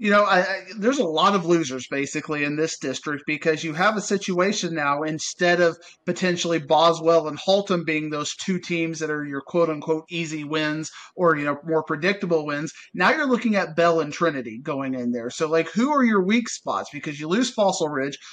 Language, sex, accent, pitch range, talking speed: English, male, American, 160-185 Hz, 210 wpm